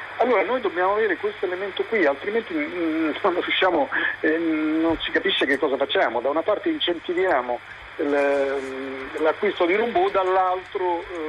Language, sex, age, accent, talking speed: Italian, male, 40-59, native, 135 wpm